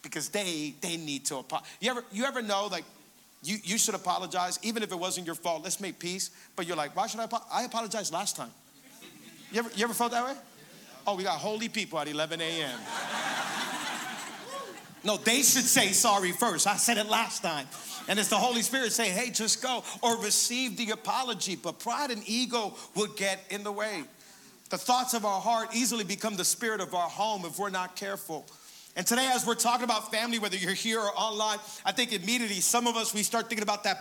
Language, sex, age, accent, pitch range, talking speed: English, male, 40-59, American, 200-240 Hz, 215 wpm